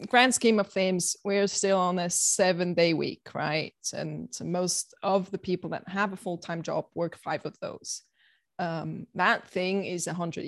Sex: female